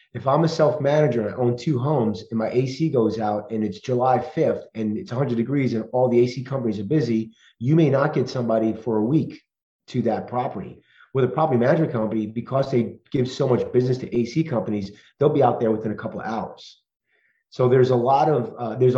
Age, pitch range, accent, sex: 30-49, 110-130 Hz, American, male